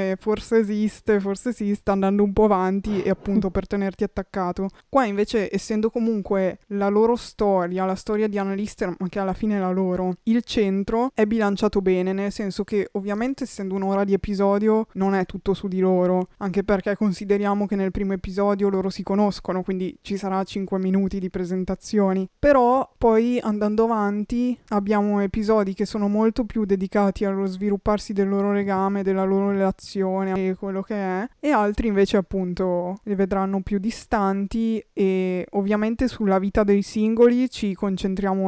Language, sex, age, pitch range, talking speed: Italian, female, 20-39, 190-215 Hz, 170 wpm